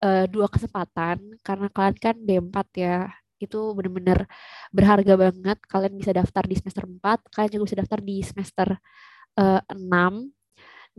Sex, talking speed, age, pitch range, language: female, 140 wpm, 20-39, 190-215 Hz, Indonesian